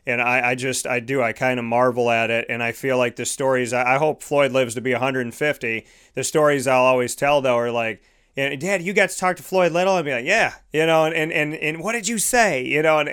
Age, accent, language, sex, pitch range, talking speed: 30-49, American, English, male, 125-145 Hz, 270 wpm